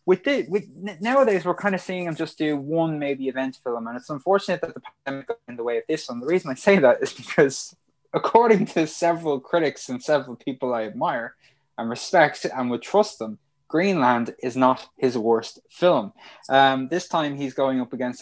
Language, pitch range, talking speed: English, 120-150 Hz, 210 wpm